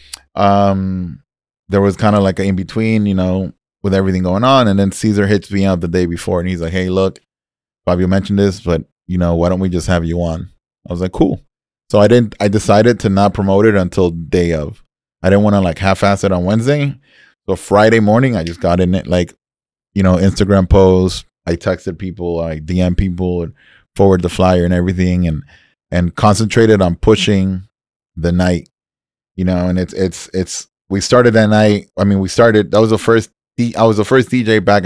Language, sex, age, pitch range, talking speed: English, male, 20-39, 90-105 Hz, 215 wpm